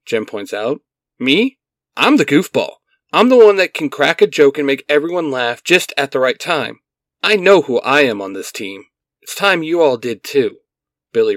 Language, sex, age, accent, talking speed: English, male, 40-59, American, 205 wpm